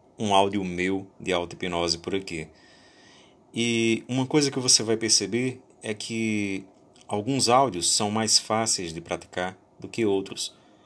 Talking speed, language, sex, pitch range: 145 wpm, Portuguese, male, 90-105 Hz